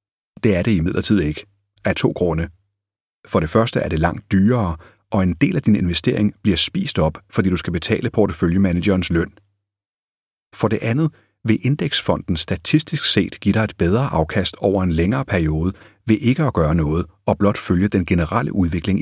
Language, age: Danish, 30-49